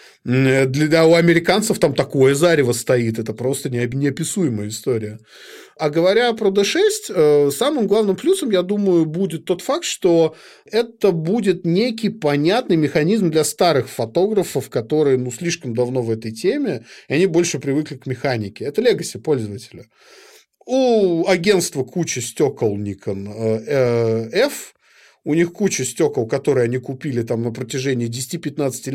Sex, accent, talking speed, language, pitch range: male, native, 135 wpm, Russian, 125-180 Hz